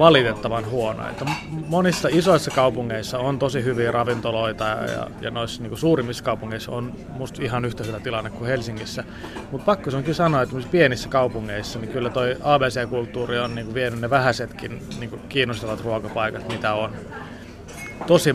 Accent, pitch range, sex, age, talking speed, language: native, 115-140 Hz, male, 30-49, 155 wpm, Finnish